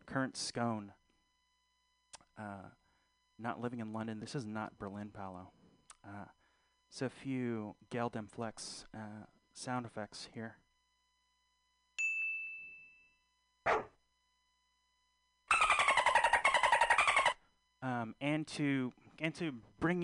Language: English